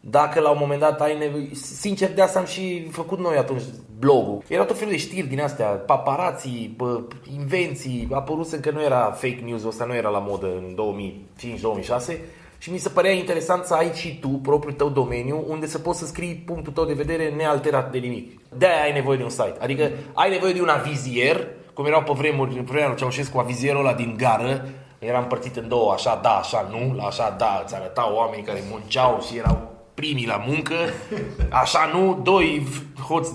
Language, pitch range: Romanian, 130-170 Hz